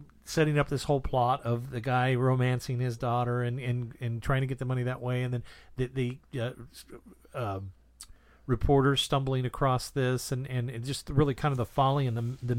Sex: male